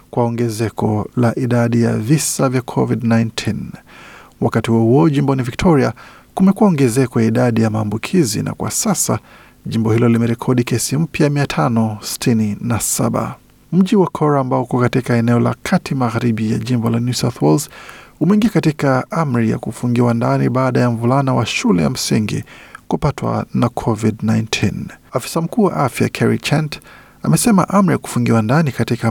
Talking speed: 140 wpm